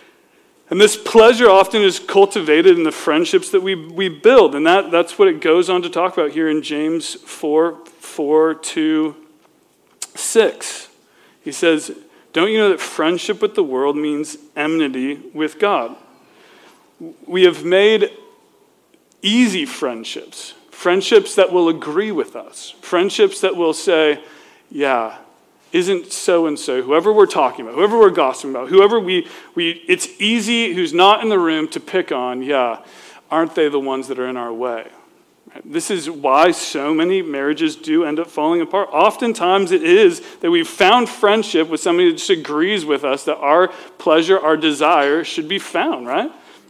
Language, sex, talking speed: English, male, 165 wpm